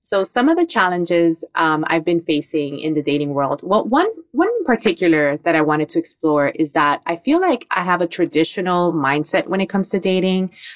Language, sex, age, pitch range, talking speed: English, female, 20-39, 150-170 Hz, 205 wpm